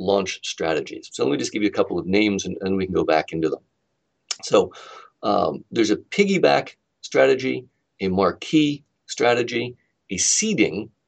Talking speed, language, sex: 170 wpm, English, male